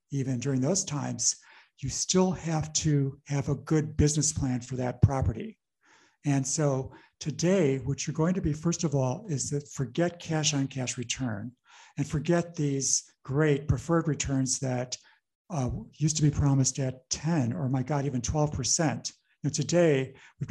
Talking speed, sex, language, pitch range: 165 wpm, male, English, 130-150 Hz